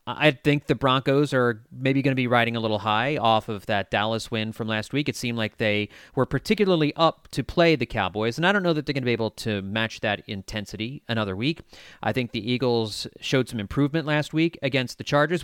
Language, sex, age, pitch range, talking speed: English, male, 30-49, 115-160 Hz, 235 wpm